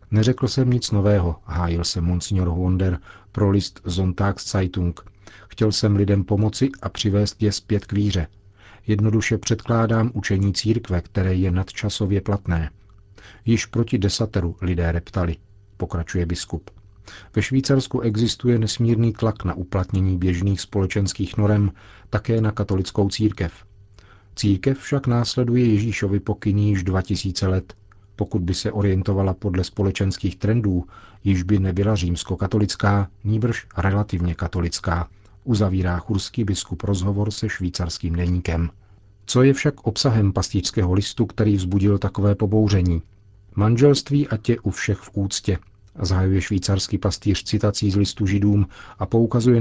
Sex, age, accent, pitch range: male, 40-59, native, 95-110 Hz